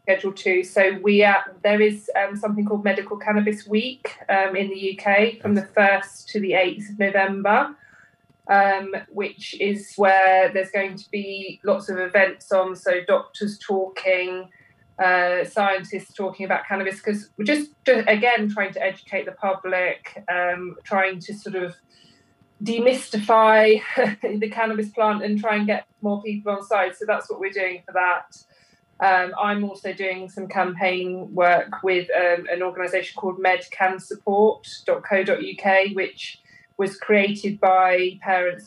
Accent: British